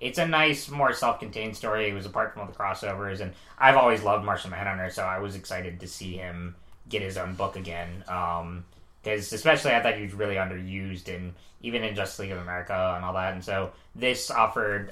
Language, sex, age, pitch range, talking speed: English, male, 20-39, 90-110 Hz, 215 wpm